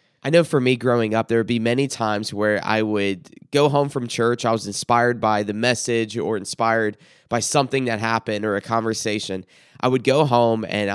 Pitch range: 110-135 Hz